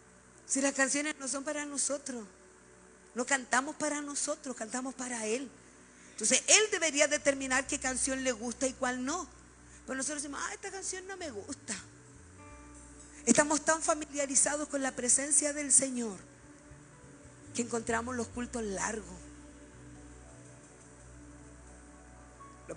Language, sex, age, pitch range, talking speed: Spanish, female, 50-69, 190-285 Hz, 125 wpm